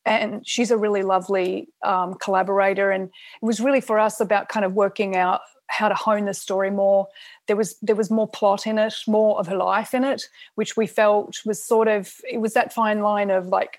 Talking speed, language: 220 wpm, English